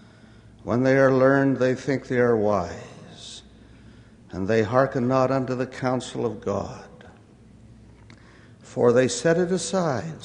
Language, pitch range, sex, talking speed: English, 110-130 Hz, male, 135 wpm